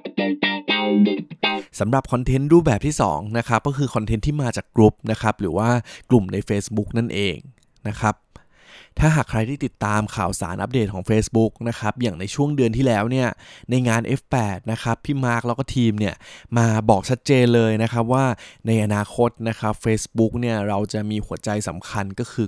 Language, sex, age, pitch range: Thai, male, 20-39, 105-125 Hz